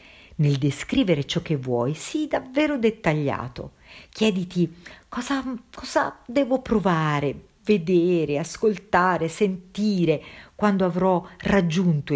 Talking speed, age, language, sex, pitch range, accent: 95 wpm, 50-69, Italian, female, 135-210 Hz, native